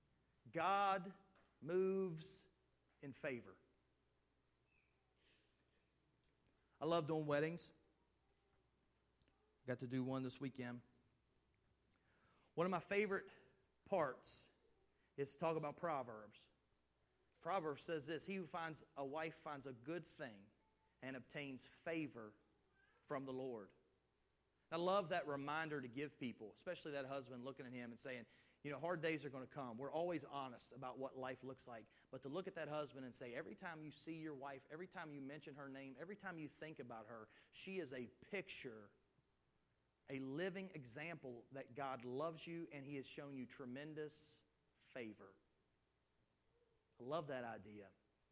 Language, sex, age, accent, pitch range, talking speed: English, male, 40-59, American, 125-165 Hz, 150 wpm